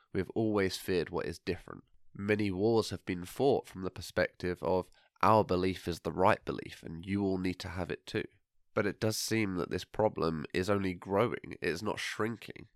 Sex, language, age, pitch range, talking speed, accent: male, English, 20-39, 90-105 Hz, 205 wpm, British